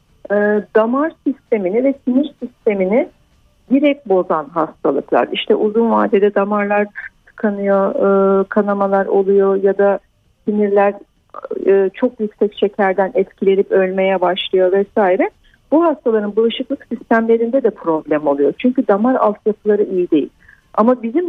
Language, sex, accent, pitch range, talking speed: Turkish, female, native, 205-270 Hz, 110 wpm